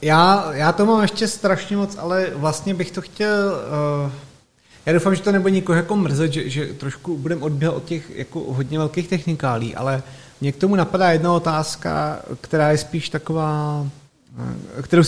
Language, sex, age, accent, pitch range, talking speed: Czech, male, 30-49, native, 130-160 Hz, 170 wpm